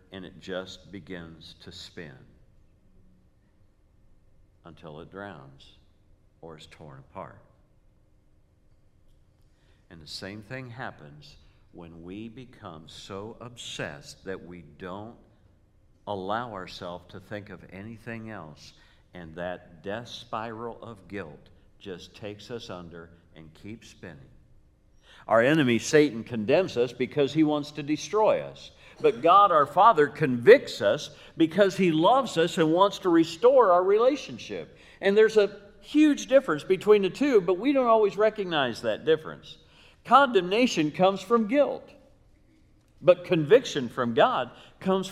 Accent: American